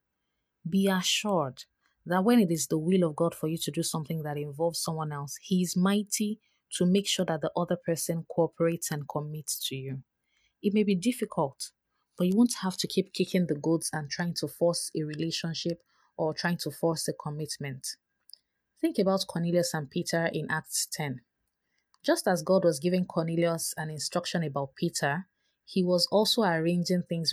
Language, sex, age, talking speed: English, female, 30-49, 180 wpm